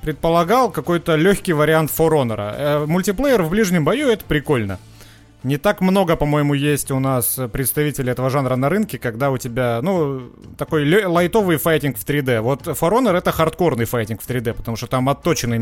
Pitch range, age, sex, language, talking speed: 130-170 Hz, 30-49, male, Russian, 170 wpm